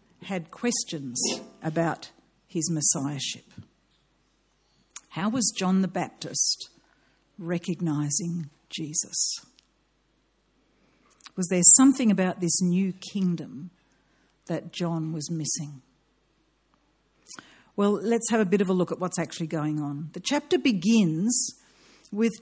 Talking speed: 105 wpm